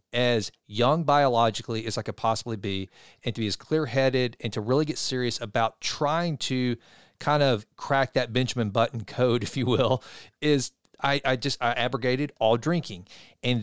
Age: 40-59